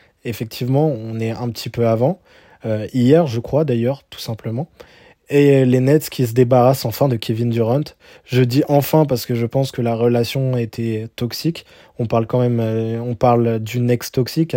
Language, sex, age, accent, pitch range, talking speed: French, male, 20-39, French, 120-140 Hz, 190 wpm